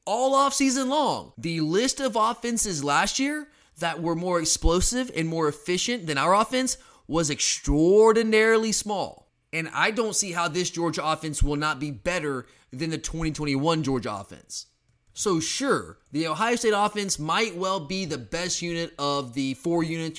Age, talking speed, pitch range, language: 20-39, 165 wpm, 145-195 Hz, English